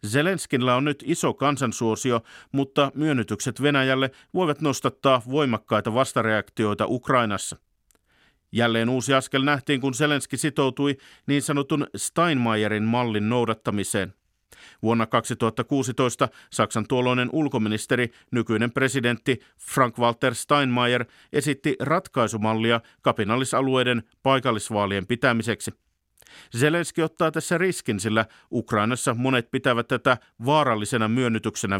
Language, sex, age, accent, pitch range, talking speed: Finnish, male, 50-69, native, 115-140 Hz, 95 wpm